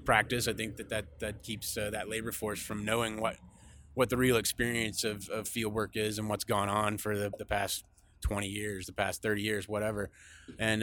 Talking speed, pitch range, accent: 215 wpm, 95-110 Hz, American